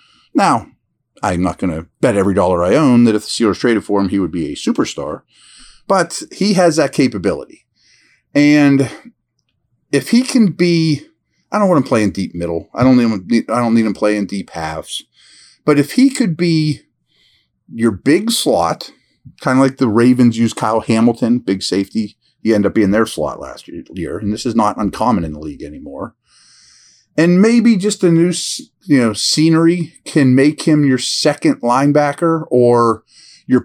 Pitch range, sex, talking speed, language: 110-160 Hz, male, 185 wpm, English